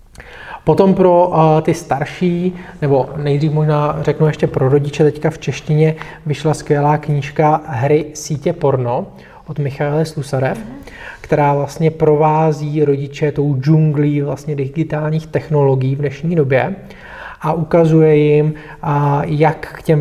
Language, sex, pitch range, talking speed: Slovak, male, 140-155 Hz, 120 wpm